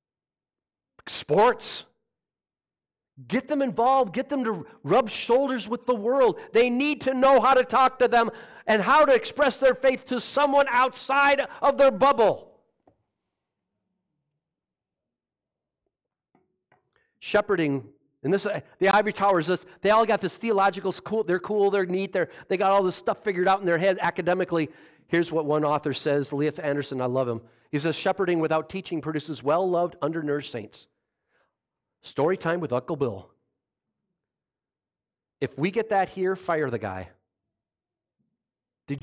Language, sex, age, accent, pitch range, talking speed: English, male, 40-59, American, 145-225 Hz, 145 wpm